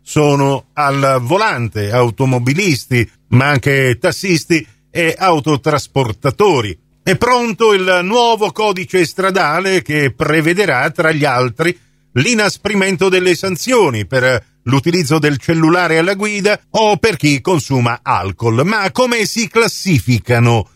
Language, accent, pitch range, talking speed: Italian, native, 135-185 Hz, 110 wpm